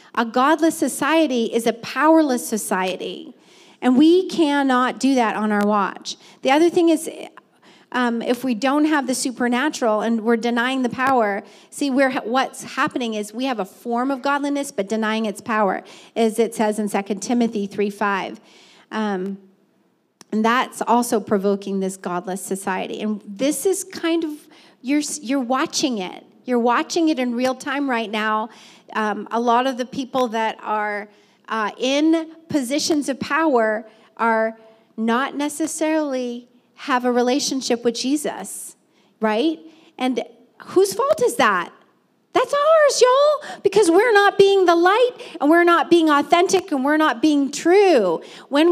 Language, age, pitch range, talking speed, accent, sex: English, 40-59, 220-310 Hz, 155 wpm, American, female